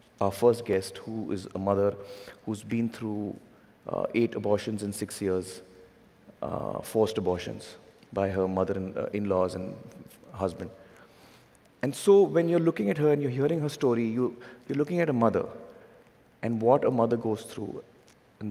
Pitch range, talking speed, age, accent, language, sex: 100-135 Hz, 170 wpm, 30-49, native, Hindi, male